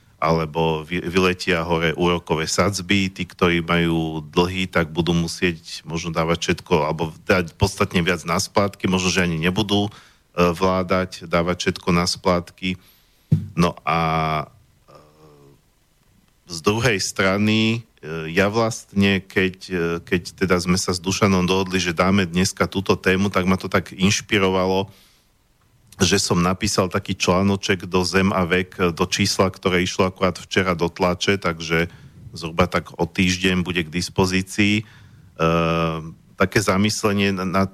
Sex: male